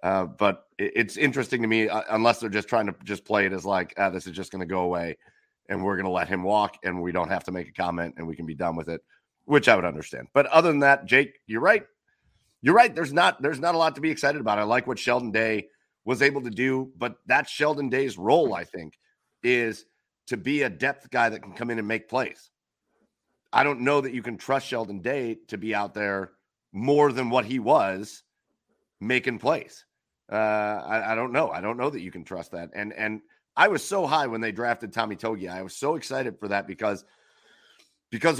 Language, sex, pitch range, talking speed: English, male, 100-125 Hz, 235 wpm